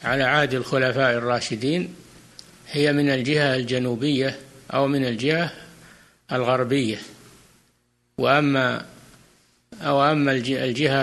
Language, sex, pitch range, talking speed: Arabic, male, 125-145 Hz, 75 wpm